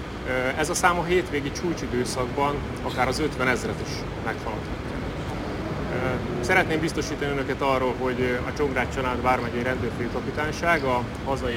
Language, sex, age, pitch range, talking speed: Hungarian, male, 30-49, 115-135 Hz, 125 wpm